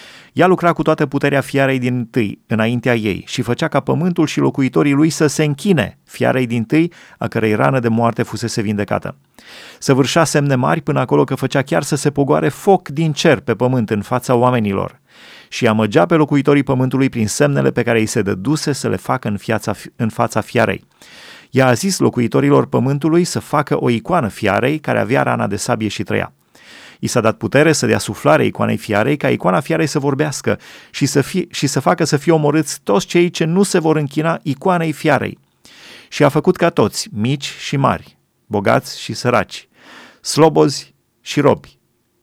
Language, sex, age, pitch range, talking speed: Romanian, male, 30-49, 115-155 Hz, 185 wpm